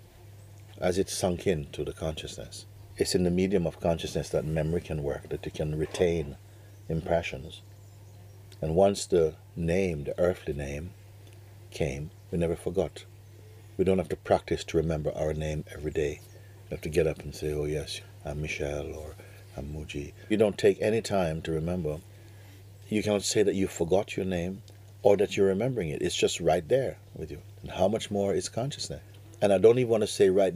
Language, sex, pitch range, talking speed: English, male, 85-100 Hz, 190 wpm